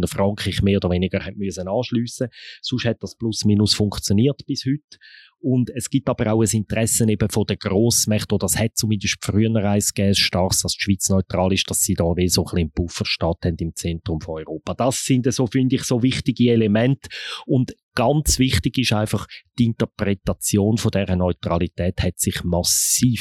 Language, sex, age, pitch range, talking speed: German, male, 30-49, 95-120 Hz, 180 wpm